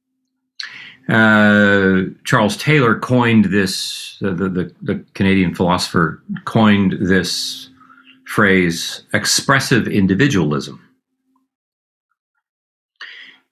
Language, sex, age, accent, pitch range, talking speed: English, male, 40-59, American, 95-130 Hz, 70 wpm